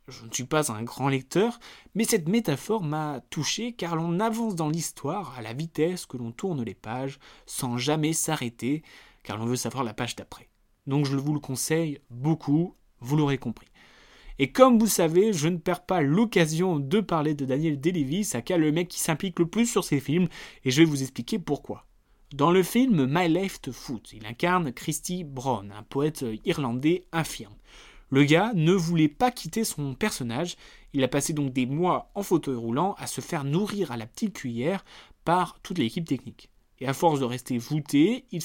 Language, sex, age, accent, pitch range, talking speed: French, male, 20-39, French, 130-190 Hz, 195 wpm